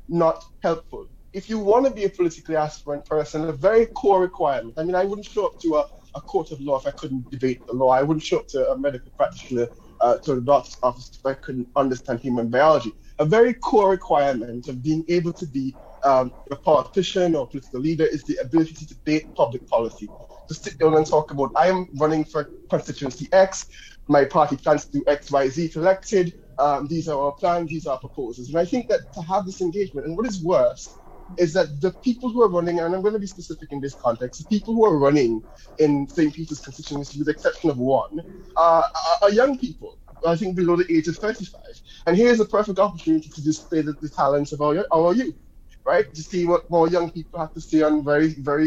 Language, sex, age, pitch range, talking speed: English, male, 20-39, 145-185 Hz, 225 wpm